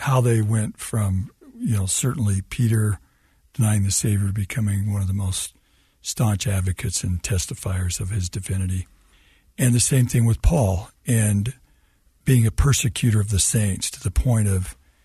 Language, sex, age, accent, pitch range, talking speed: English, male, 60-79, American, 95-120 Hz, 165 wpm